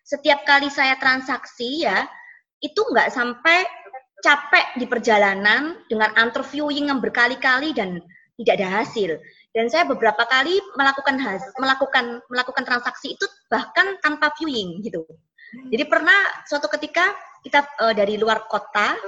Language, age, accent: Indonesian, 20-39, native